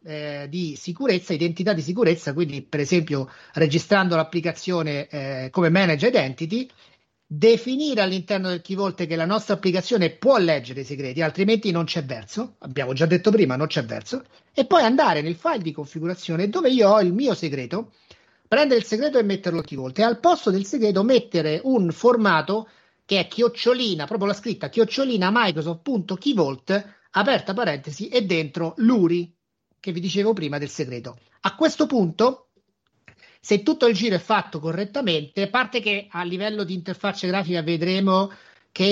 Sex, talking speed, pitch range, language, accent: male, 165 wpm, 160-220 Hz, Italian, native